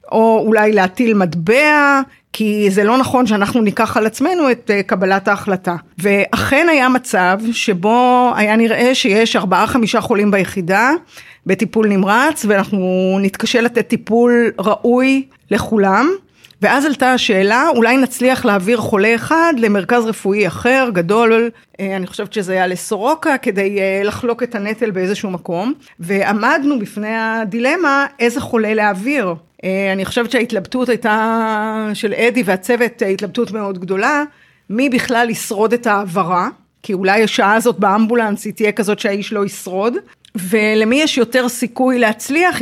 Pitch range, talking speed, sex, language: 200-245 Hz, 130 wpm, female, Hebrew